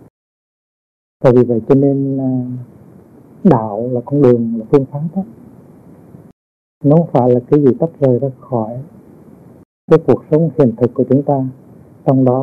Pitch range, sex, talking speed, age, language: 120-145 Hz, male, 160 wpm, 60-79, Vietnamese